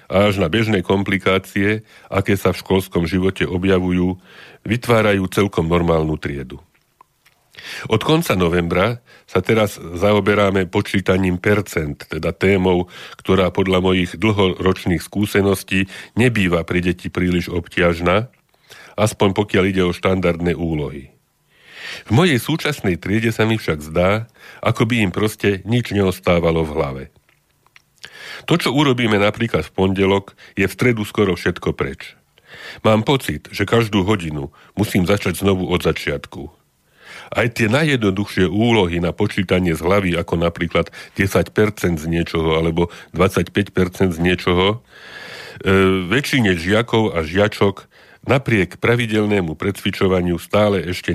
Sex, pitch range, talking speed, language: male, 85-105 Hz, 125 wpm, Slovak